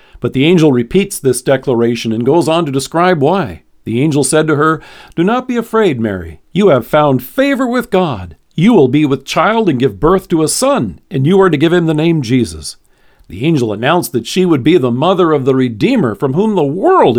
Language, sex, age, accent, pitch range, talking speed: English, male, 50-69, American, 125-190 Hz, 225 wpm